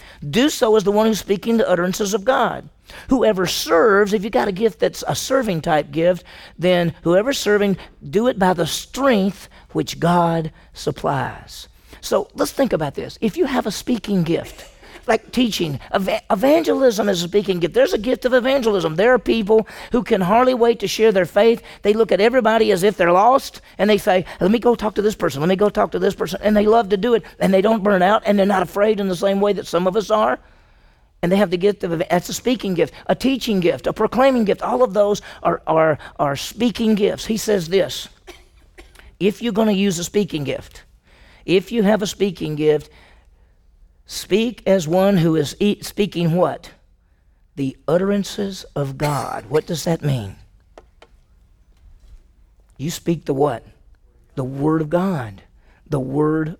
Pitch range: 150-215 Hz